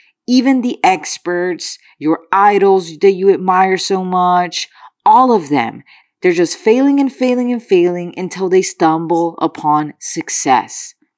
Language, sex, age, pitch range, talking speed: English, female, 20-39, 175-245 Hz, 135 wpm